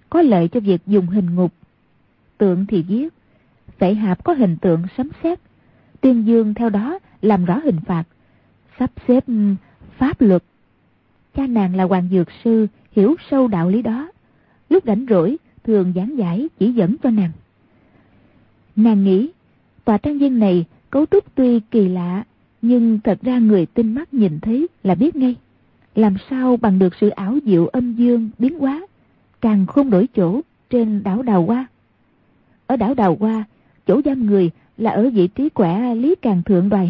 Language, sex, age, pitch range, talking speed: Vietnamese, female, 20-39, 190-255 Hz, 175 wpm